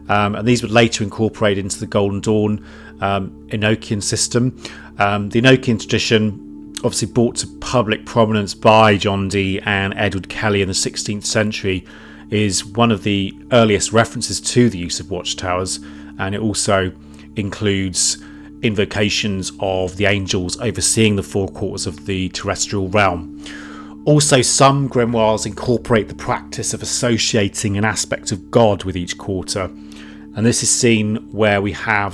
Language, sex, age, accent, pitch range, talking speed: English, male, 30-49, British, 90-110 Hz, 150 wpm